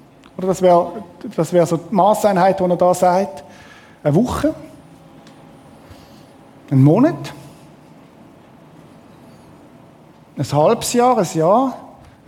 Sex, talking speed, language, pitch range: male, 105 wpm, German, 170-220 Hz